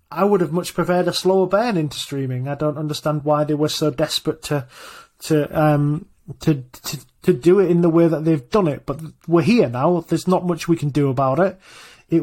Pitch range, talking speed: 140-175 Hz, 225 wpm